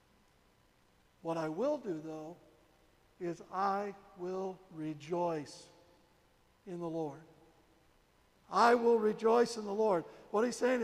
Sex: male